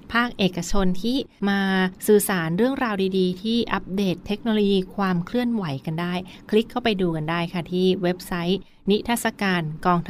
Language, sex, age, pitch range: Thai, female, 20-39, 175-200 Hz